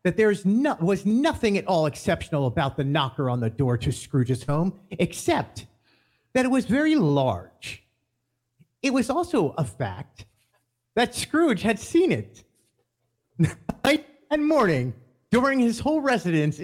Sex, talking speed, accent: male, 140 wpm, American